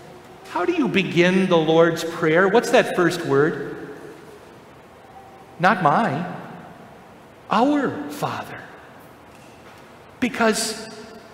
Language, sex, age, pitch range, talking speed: English, male, 50-69, 200-250 Hz, 85 wpm